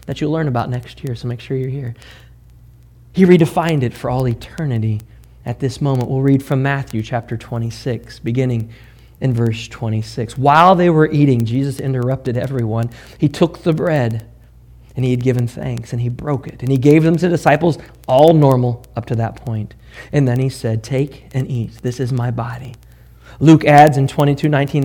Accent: American